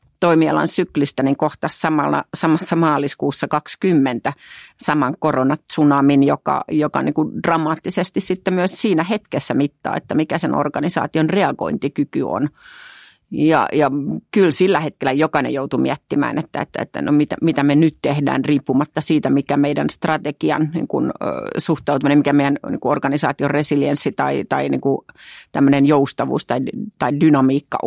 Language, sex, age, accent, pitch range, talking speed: Finnish, female, 40-59, native, 140-165 Hz, 135 wpm